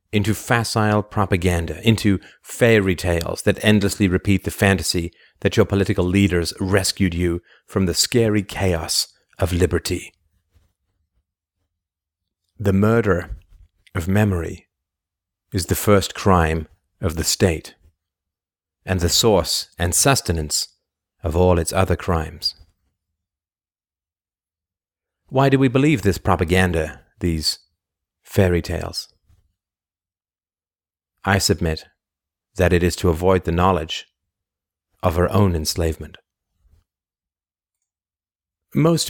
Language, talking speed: English, 105 wpm